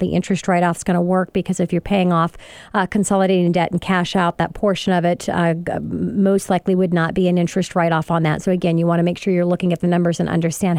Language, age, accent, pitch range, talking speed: English, 40-59, American, 170-200 Hz, 275 wpm